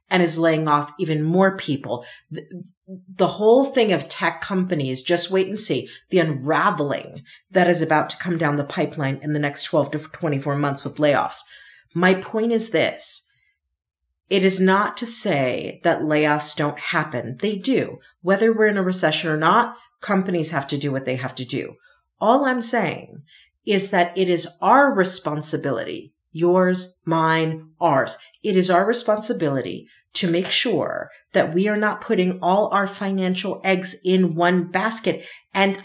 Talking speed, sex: 165 wpm, female